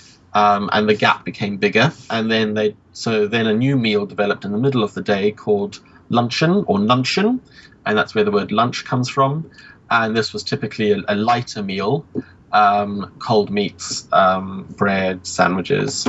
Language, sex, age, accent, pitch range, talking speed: English, male, 30-49, British, 105-135 Hz, 175 wpm